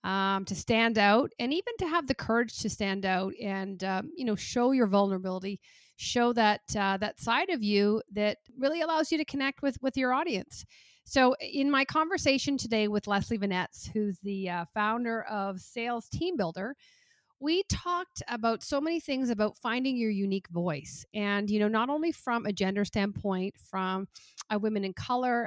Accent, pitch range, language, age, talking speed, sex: American, 205-260 Hz, English, 40-59, 185 wpm, female